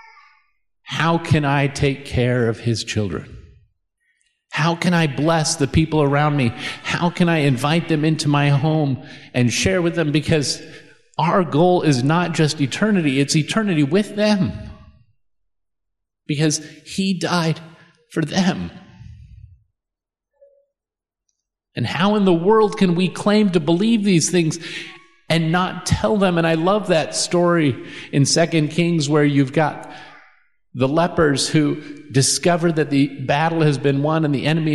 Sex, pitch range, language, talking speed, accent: male, 140-180 Hz, English, 145 wpm, American